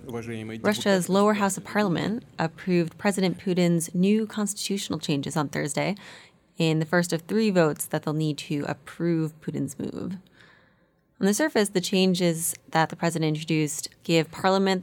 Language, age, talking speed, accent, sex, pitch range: English, 20-39, 150 wpm, American, female, 155-185 Hz